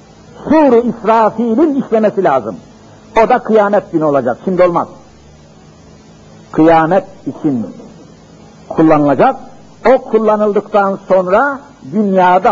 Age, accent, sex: 60-79, native, male